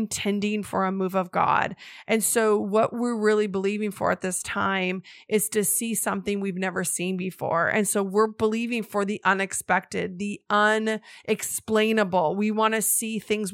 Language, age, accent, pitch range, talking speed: English, 30-49, American, 190-220 Hz, 170 wpm